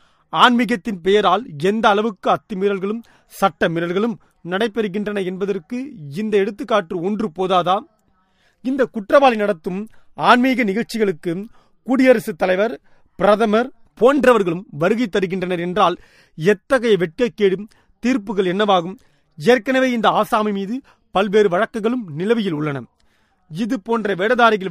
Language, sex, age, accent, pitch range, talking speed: Tamil, male, 30-49, native, 180-225 Hz, 90 wpm